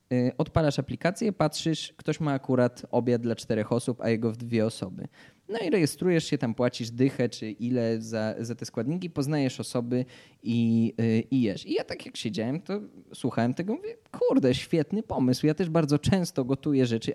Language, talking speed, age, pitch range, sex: Polish, 180 wpm, 20-39, 120-145 Hz, male